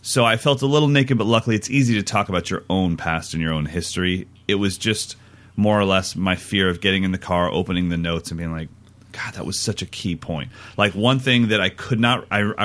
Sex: male